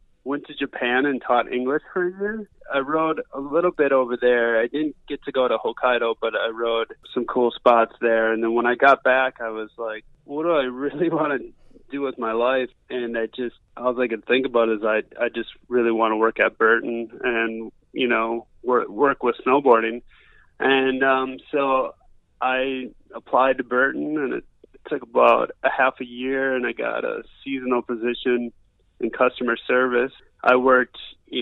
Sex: male